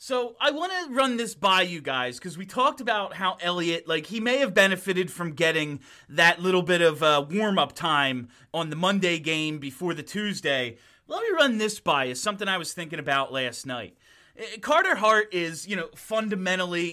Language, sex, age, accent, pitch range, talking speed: English, male, 30-49, American, 165-230 Hz, 200 wpm